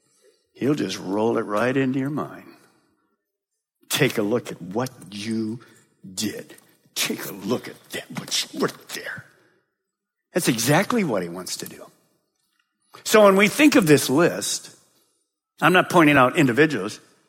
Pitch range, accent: 170-280 Hz, American